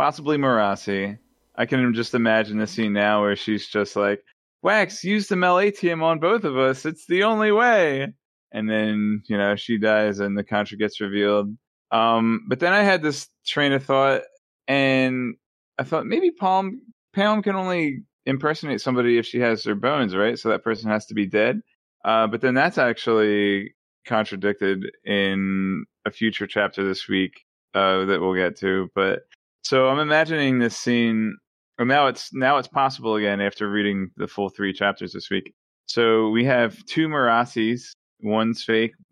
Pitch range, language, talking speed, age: 105-135 Hz, English, 170 wpm, 20-39